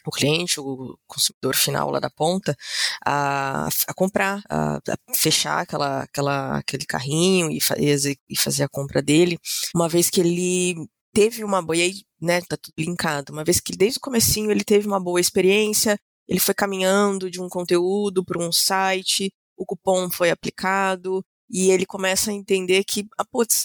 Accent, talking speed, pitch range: Brazilian, 180 wpm, 155-195 Hz